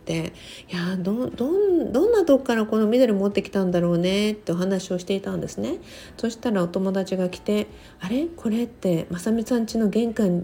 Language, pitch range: Japanese, 170-225 Hz